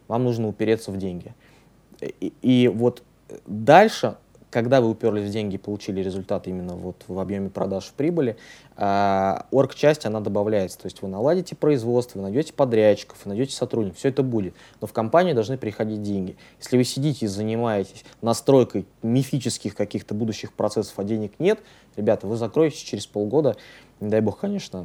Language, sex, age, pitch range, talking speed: Russian, male, 20-39, 100-125 Hz, 160 wpm